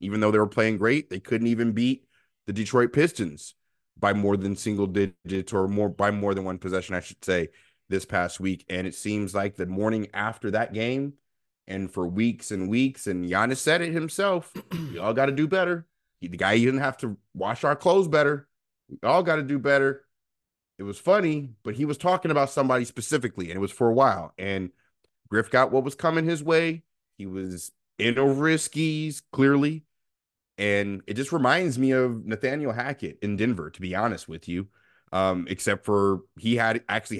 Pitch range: 100-135 Hz